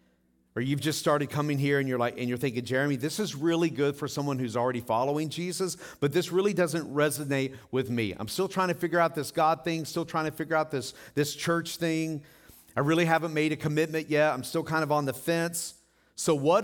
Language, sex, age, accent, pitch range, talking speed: English, male, 40-59, American, 105-150 Hz, 230 wpm